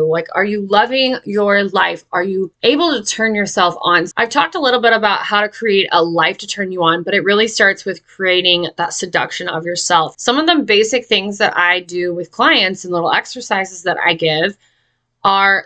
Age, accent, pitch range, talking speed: 20-39, American, 175-210 Hz, 210 wpm